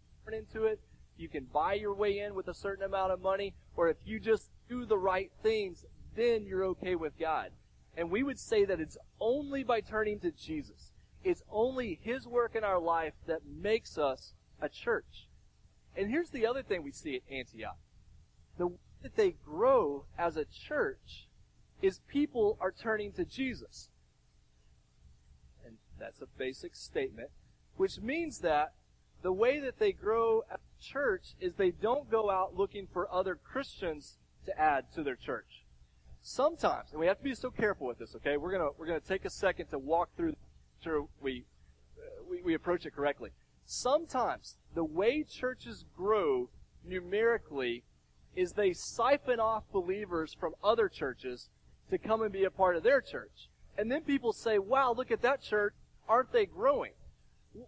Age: 40-59